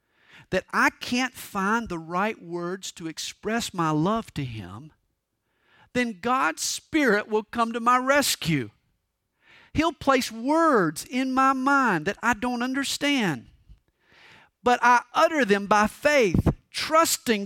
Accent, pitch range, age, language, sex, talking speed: American, 195-270 Hz, 50-69, English, male, 130 wpm